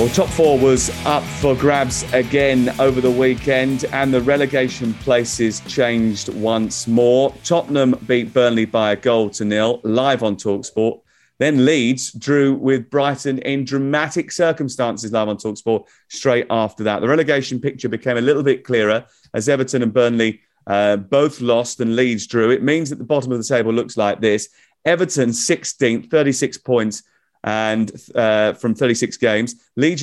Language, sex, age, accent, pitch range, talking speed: English, male, 30-49, British, 110-140 Hz, 165 wpm